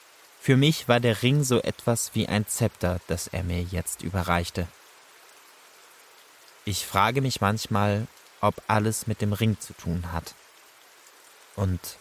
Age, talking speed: 20-39, 140 wpm